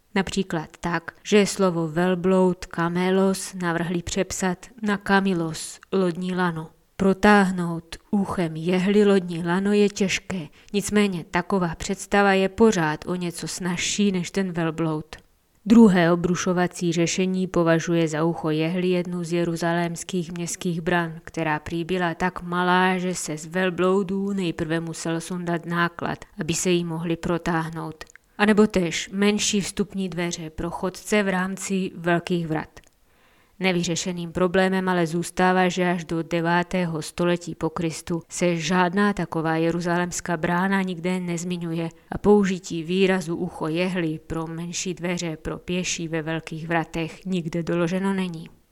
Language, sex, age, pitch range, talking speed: Czech, female, 20-39, 170-190 Hz, 135 wpm